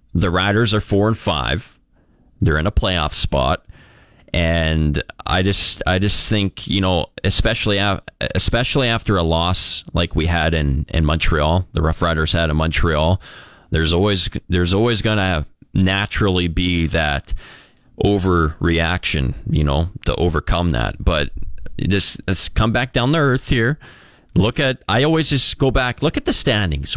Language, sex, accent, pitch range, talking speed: English, male, American, 85-105 Hz, 160 wpm